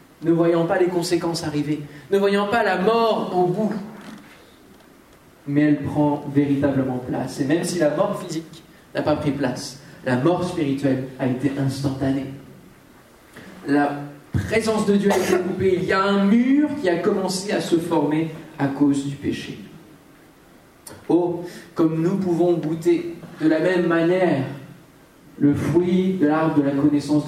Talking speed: 160 wpm